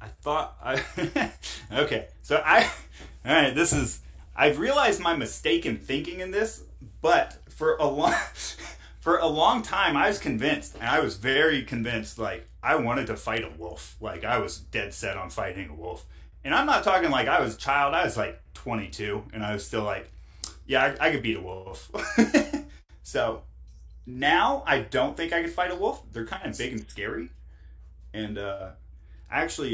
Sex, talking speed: male, 190 wpm